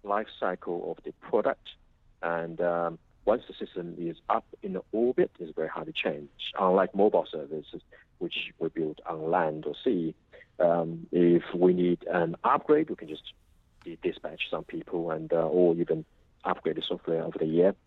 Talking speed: 180 wpm